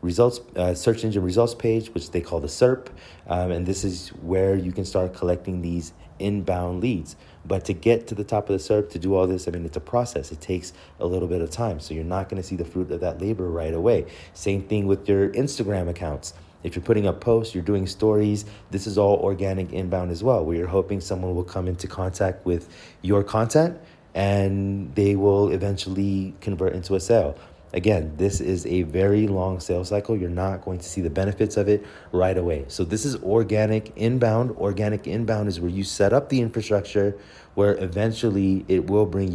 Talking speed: 215 wpm